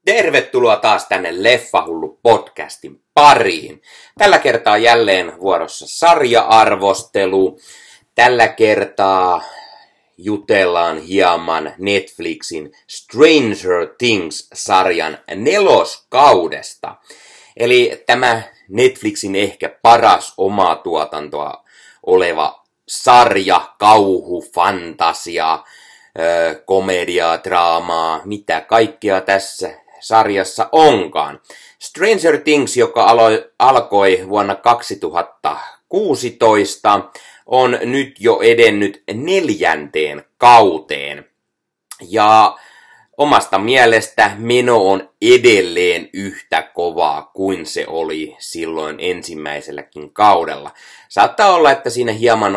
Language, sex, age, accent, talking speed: Finnish, male, 30-49, native, 75 wpm